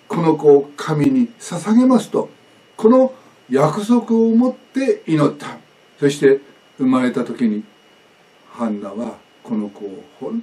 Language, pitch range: Japanese, 140-230 Hz